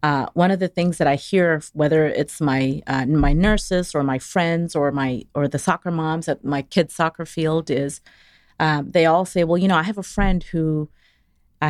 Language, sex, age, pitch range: English, female, 30-49, 145-175 Hz